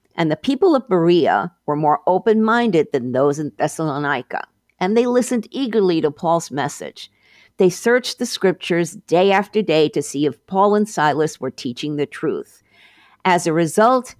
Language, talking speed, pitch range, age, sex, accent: English, 165 wpm, 150-205 Hz, 50-69, female, American